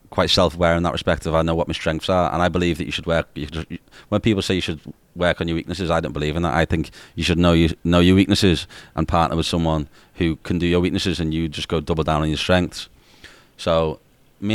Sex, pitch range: male, 80-90 Hz